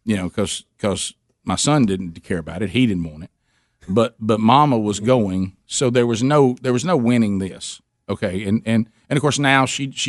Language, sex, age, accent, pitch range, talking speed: English, male, 50-69, American, 105-125 Hz, 210 wpm